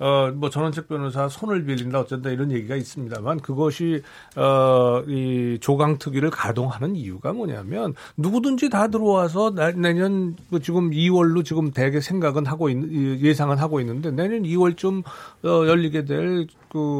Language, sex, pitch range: Korean, male, 135-175 Hz